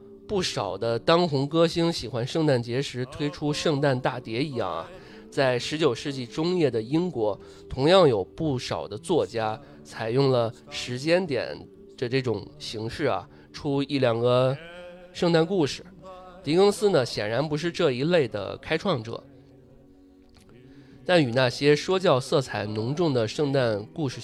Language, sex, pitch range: Chinese, male, 110-155 Hz